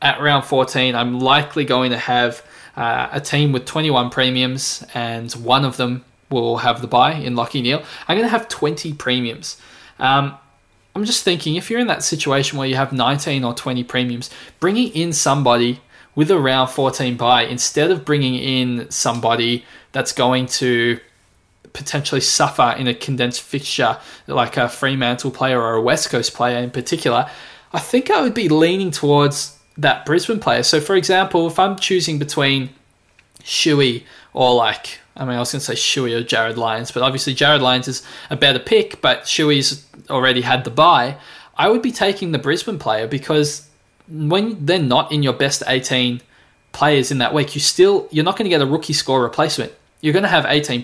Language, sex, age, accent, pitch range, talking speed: English, male, 20-39, Australian, 125-155 Hz, 190 wpm